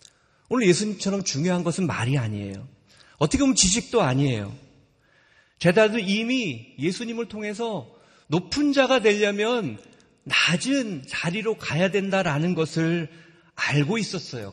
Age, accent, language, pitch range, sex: 40-59, native, Korean, 135-200 Hz, male